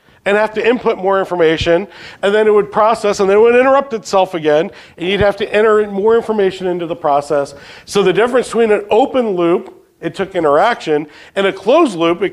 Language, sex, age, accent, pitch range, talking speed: English, male, 40-59, American, 160-220 Hz, 210 wpm